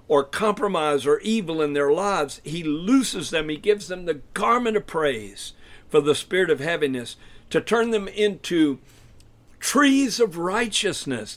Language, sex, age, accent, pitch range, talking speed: English, male, 60-79, American, 135-200 Hz, 150 wpm